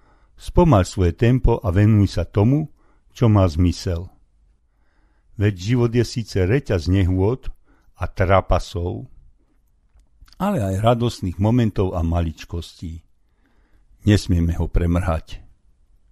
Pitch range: 85-115 Hz